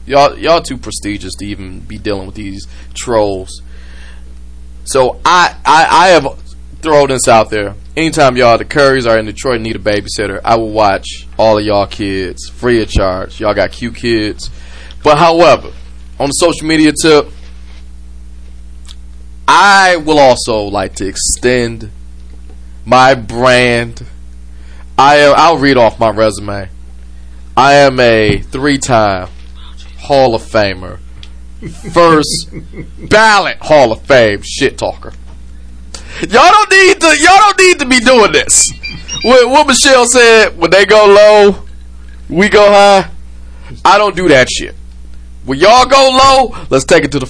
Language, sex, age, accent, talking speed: English, male, 20-39, American, 145 wpm